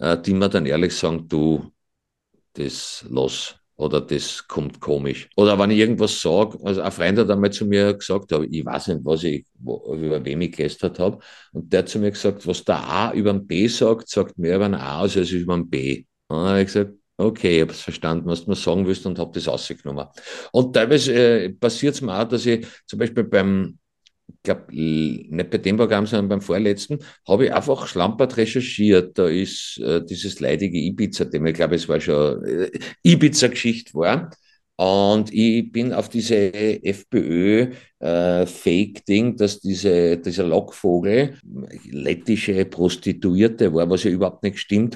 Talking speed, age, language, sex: 180 wpm, 50-69, German, male